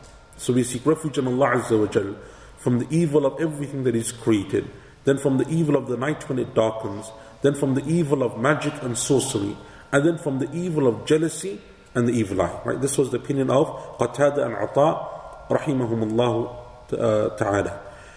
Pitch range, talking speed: 120-150 Hz, 180 wpm